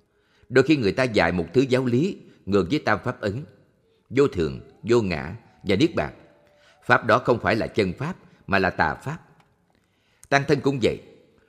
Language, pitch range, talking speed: Vietnamese, 95-135 Hz, 190 wpm